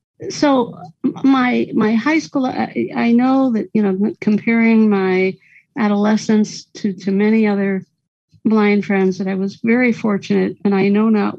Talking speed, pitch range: 155 wpm, 185-225 Hz